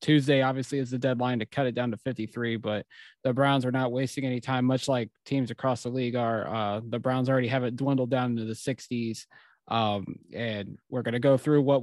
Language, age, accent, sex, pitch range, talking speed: English, 20-39, American, male, 120-145 Hz, 230 wpm